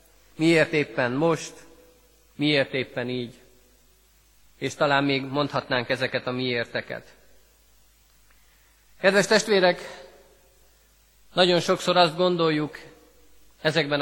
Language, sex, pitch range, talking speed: Hungarian, male, 130-180 Hz, 85 wpm